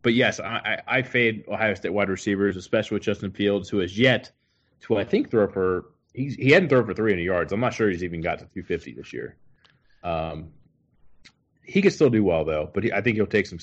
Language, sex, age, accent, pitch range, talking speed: English, male, 30-49, American, 95-130 Hz, 230 wpm